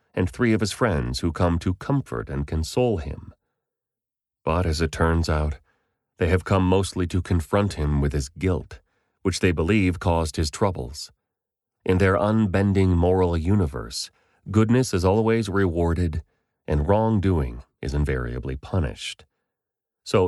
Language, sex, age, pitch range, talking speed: English, male, 30-49, 80-95 Hz, 140 wpm